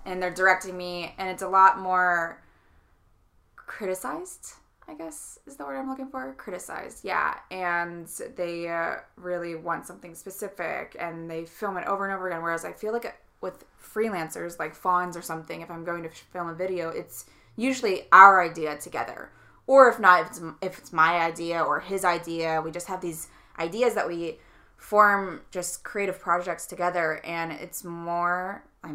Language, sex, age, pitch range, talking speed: English, female, 20-39, 165-195 Hz, 175 wpm